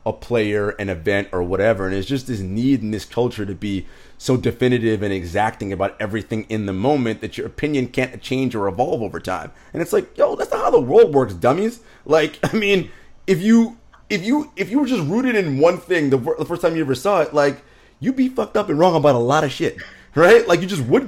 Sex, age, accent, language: male, 30-49, American, English